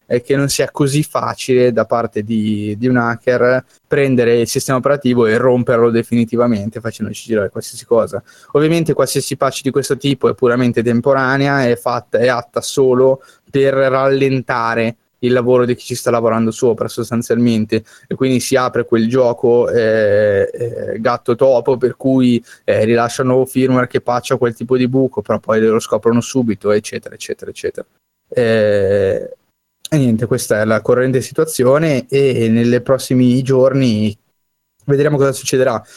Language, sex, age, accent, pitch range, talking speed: Italian, male, 20-39, native, 120-135 Hz, 155 wpm